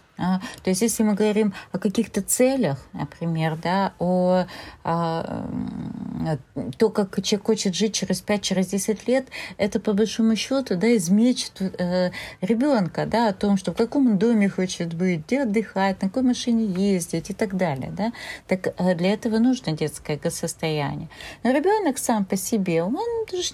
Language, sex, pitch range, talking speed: Russian, female, 165-225 Hz, 160 wpm